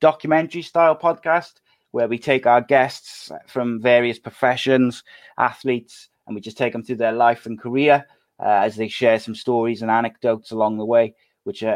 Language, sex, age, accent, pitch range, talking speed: English, male, 30-49, British, 110-130 Hz, 170 wpm